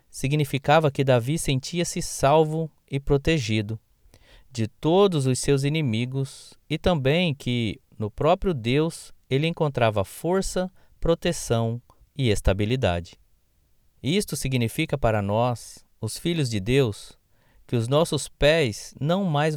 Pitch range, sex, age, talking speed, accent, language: 100-150 Hz, male, 20-39, 115 wpm, Brazilian, Portuguese